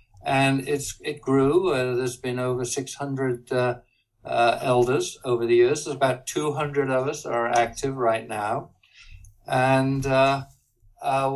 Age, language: 60-79, English